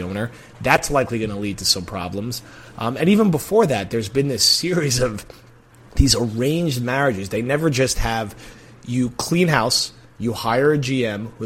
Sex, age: male, 30-49